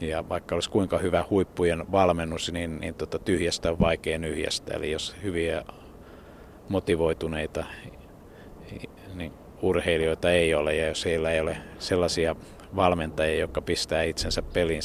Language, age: Finnish, 60-79